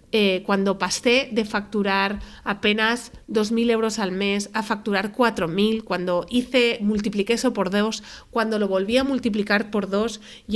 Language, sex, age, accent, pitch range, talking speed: Spanish, female, 40-59, Spanish, 190-230 Hz, 155 wpm